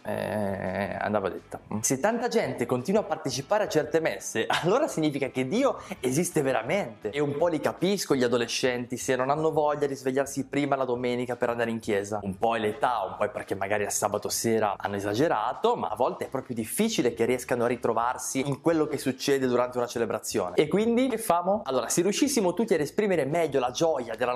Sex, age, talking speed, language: male, 20-39, 205 wpm, Italian